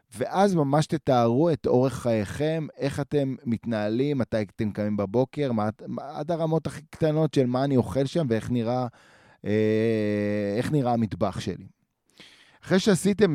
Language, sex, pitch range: Hebrew, male, 110-135 Hz